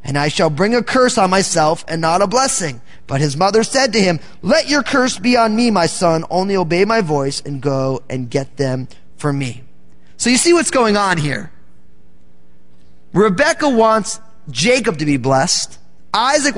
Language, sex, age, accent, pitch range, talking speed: English, male, 20-39, American, 145-225 Hz, 185 wpm